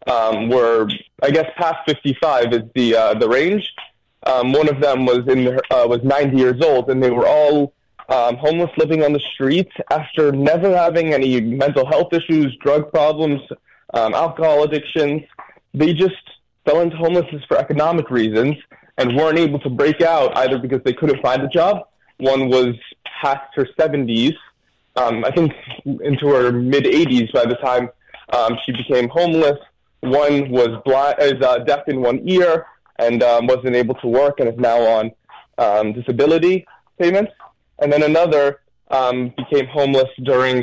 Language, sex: English, male